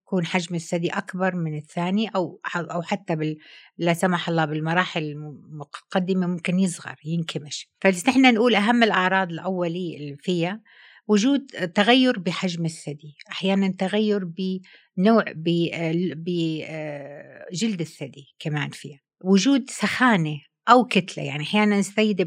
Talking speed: 125 wpm